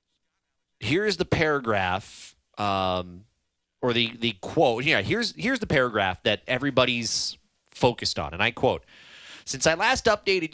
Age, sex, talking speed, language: 30-49, male, 135 wpm, English